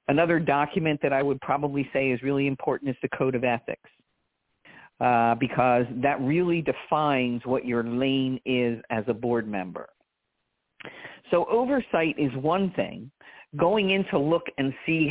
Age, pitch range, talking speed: 50-69, 125-160 Hz, 155 wpm